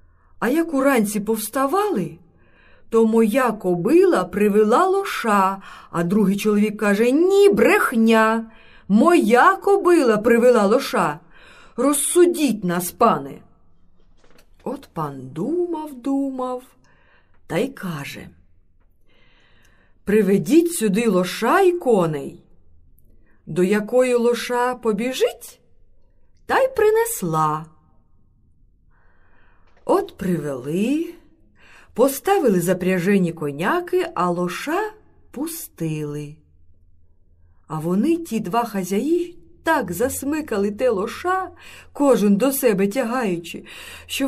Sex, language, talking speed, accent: female, Ukrainian, 85 wpm, native